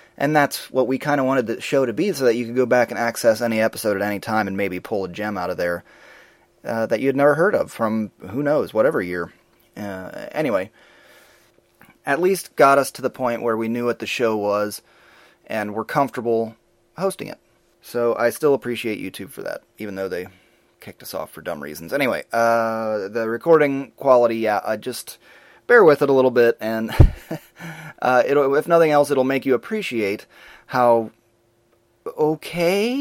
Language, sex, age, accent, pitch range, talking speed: English, male, 30-49, American, 110-145 Hz, 190 wpm